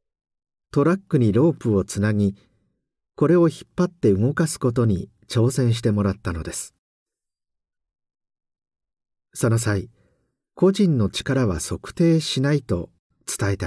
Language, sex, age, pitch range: Japanese, male, 50-69, 95-135 Hz